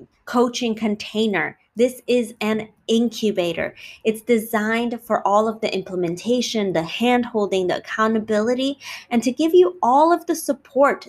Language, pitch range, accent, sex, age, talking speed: English, 190-230 Hz, American, female, 20-39, 135 wpm